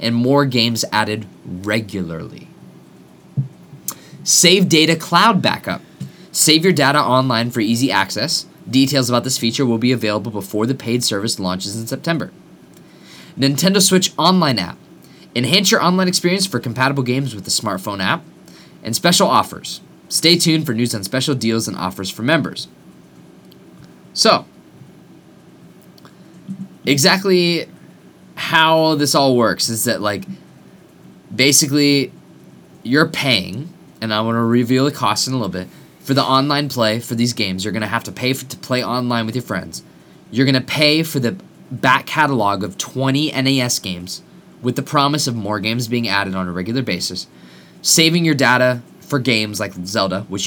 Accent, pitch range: American, 110-150 Hz